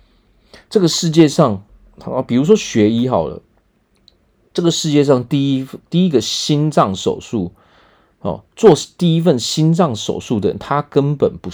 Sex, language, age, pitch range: male, Chinese, 40-59, 105-155 Hz